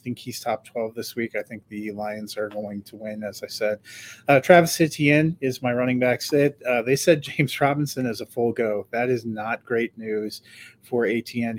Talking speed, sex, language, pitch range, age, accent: 205 wpm, male, English, 110-130 Hz, 30-49, American